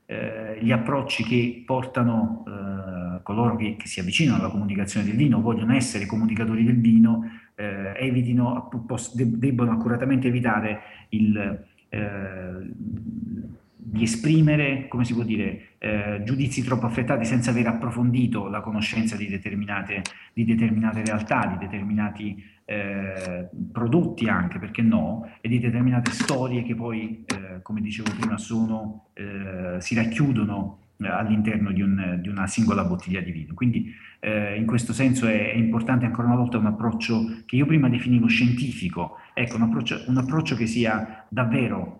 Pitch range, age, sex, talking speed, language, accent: 105-120 Hz, 40-59, male, 135 wpm, Italian, native